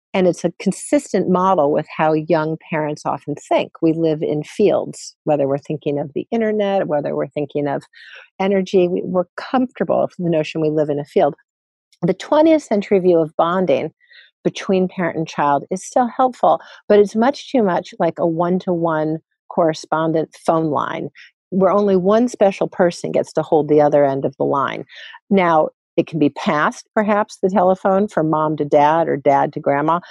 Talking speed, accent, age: 180 wpm, American, 50-69